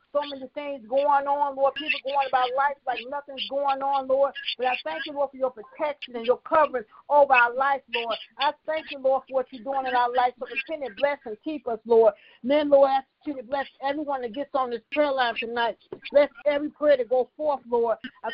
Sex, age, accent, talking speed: female, 50-69, American, 235 wpm